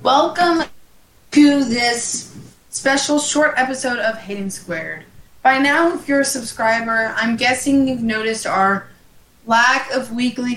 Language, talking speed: English, 130 wpm